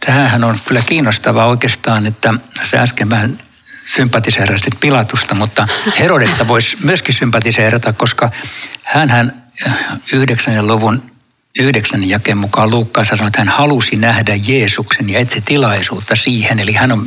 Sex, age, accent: male, 60-79, native